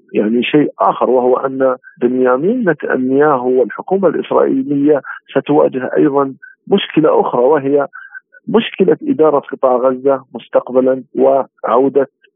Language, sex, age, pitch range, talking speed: Arabic, male, 50-69, 125-170 Hz, 95 wpm